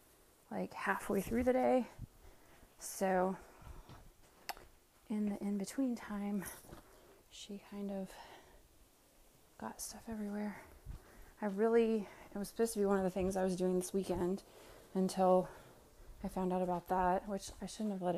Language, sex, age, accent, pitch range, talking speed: English, female, 30-49, American, 185-215 Hz, 140 wpm